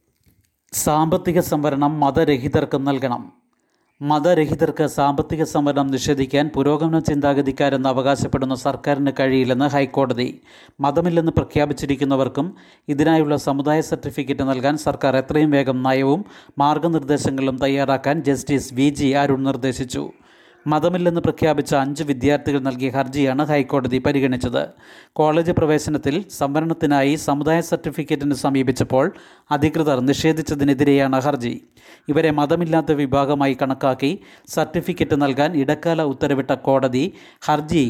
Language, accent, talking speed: Malayalam, native, 90 wpm